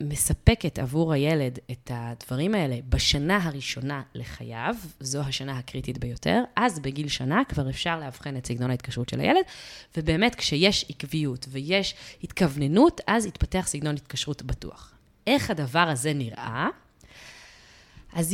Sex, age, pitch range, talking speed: female, 20-39, 130-190 Hz, 130 wpm